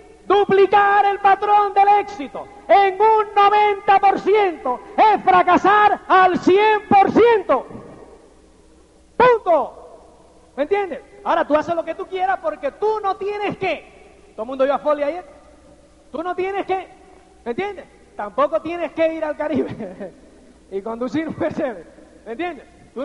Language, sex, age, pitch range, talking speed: English, male, 40-59, 310-385 Hz, 140 wpm